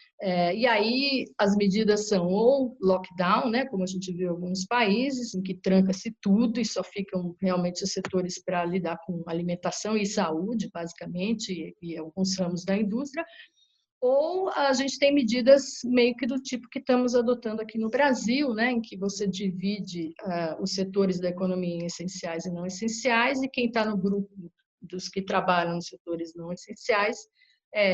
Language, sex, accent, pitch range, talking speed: Portuguese, female, Brazilian, 185-240 Hz, 175 wpm